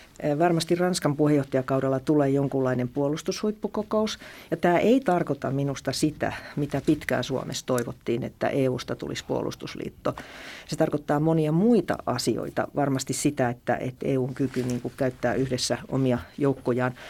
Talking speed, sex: 125 wpm, female